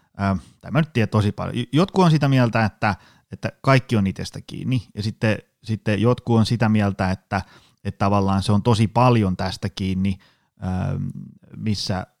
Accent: native